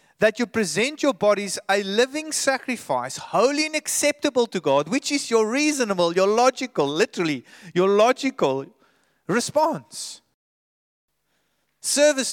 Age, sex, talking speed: 30-49, male, 115 wpm